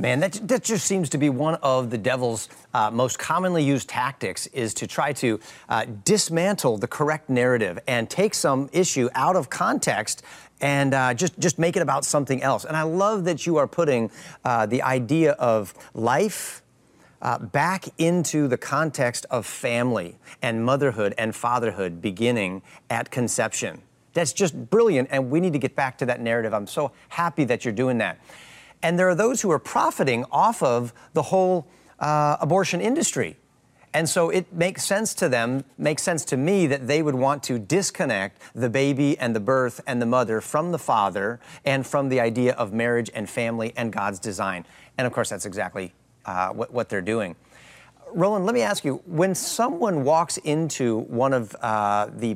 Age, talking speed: 40-59, 185 wpm